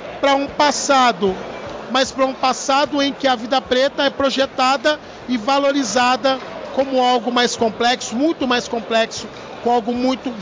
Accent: Brazilian